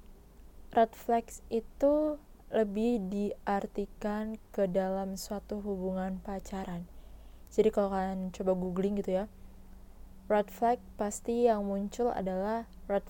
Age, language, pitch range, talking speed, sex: 20-39, Indonesian, 190-215 Hz, 110 wpm, female